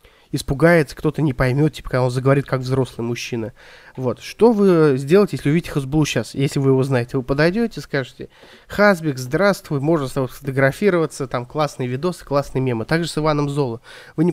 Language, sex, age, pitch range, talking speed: Russian, male, 20-39, 130-170 Hz, 180 wpm